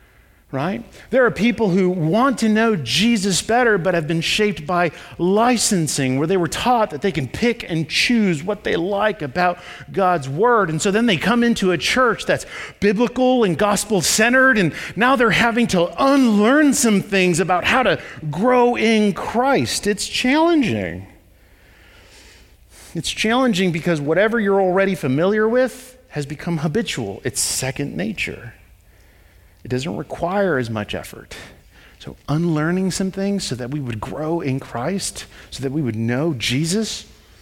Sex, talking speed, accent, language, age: male, 155 wpm, American, English, 40-59